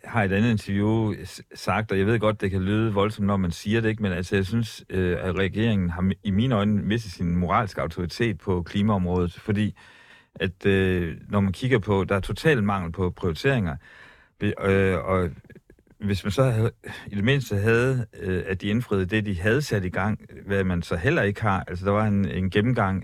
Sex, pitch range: male, 95-115 Hz